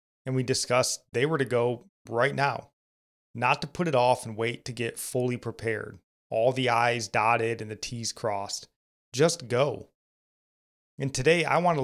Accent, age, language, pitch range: American, 30-49, English, 115-140 Hz